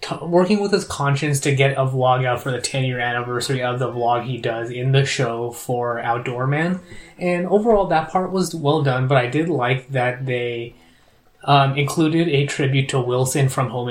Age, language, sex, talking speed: 20-39, English, male, 195 wpm